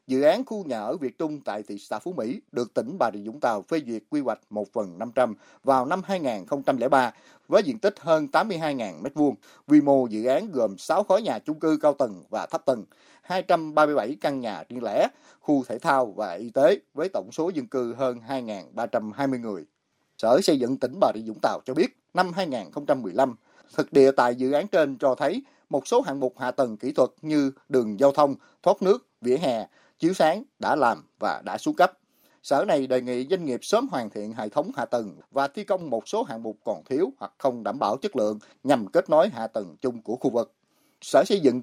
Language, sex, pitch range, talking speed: Vietnamese, male, 130-190 Hz, 220 wpm